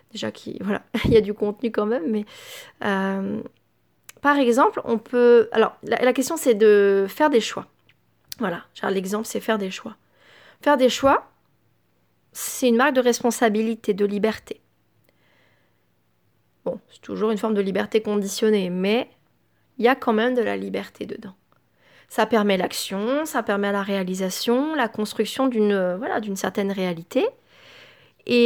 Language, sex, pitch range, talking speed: French, female, 195-235 Hz, 155 wpm